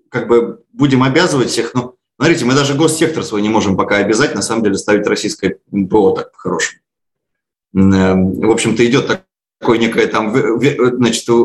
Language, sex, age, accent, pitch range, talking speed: Russian, male, 30-49, native, 105-155 Hz, 155 wpm